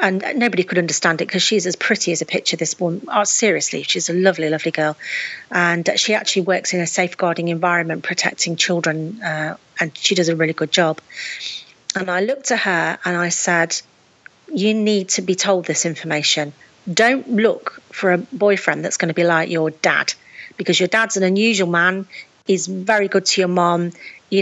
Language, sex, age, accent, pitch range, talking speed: English, female, 40-59, British, 170-205 Hz, 190 wpm